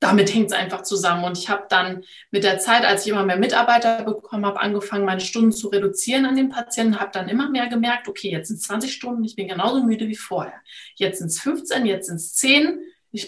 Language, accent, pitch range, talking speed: German, German, 200-245 Hz, 235 wpm